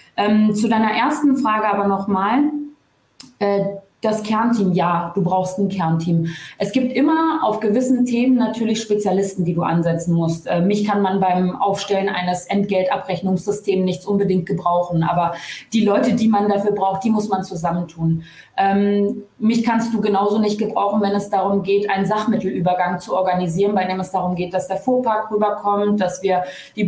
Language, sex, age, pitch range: German, female, 20-39, 190-220 Hz